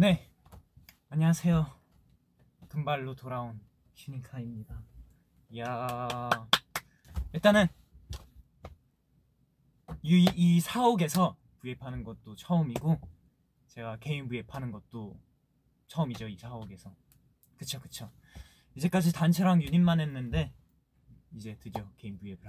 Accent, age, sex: native, 20-39, male